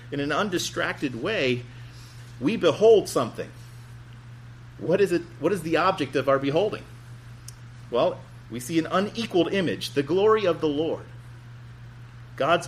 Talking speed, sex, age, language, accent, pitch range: 135 wpm, male, 40-59, English, American, 120-150 Hz